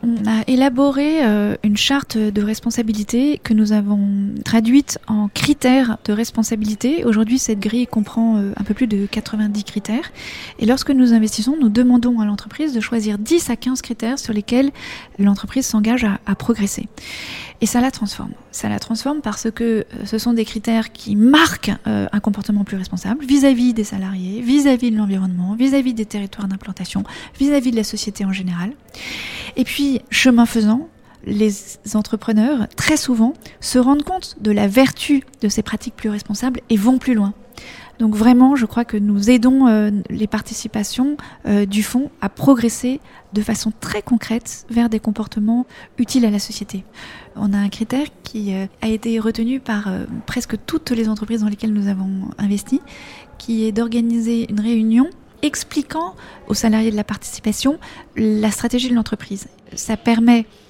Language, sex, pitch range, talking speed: French, female, 210-250 Hz, 160 wpm